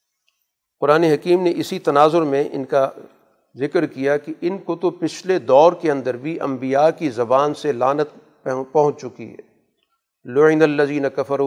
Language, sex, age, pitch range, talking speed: Urdu, male, 50-69, 140-180 Hz, 175 wpm